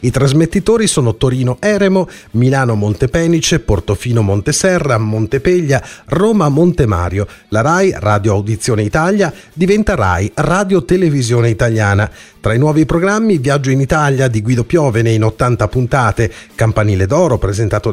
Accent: native